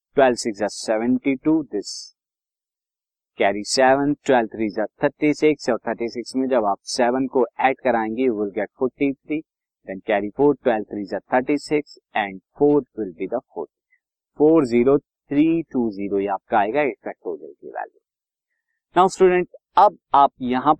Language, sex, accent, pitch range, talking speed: Hindi, male, native, 115-155 Hz, 85 wpm